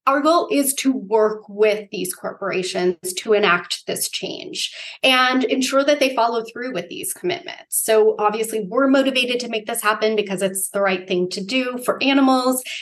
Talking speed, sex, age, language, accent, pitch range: 180 wpm, female, 30-49, English, American, 195-250 Hz